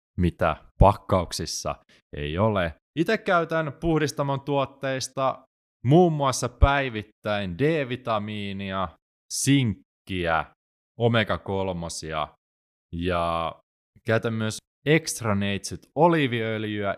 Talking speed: 65 wpm